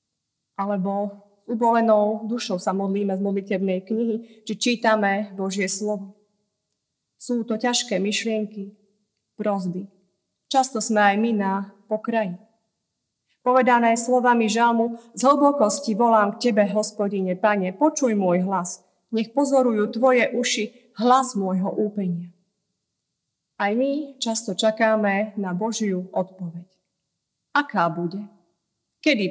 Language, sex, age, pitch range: Slovak, female, 30-49, 195-230 Hz